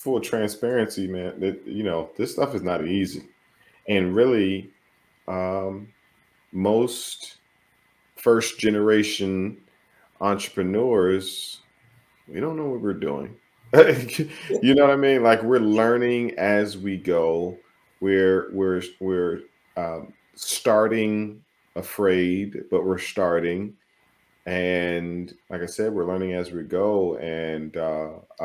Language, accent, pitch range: English, American, 85-100 Hz